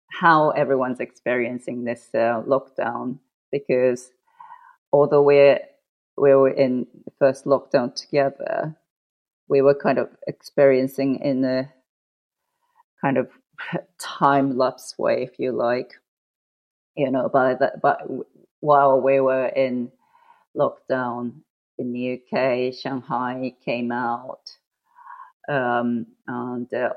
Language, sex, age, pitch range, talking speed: English, female, 30-49, 125-140 Hz, 110 wpm